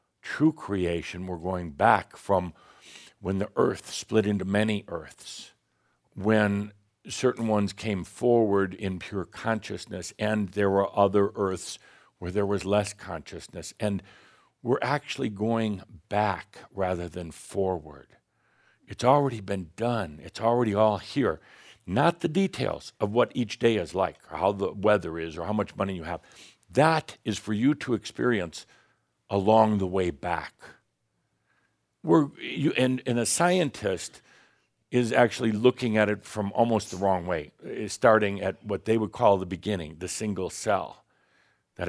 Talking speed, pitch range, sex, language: 150 wpm, 95-115 Hz, male, English